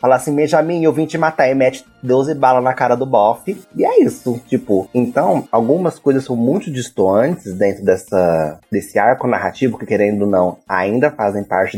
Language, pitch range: Portuguese, 95-125 Hz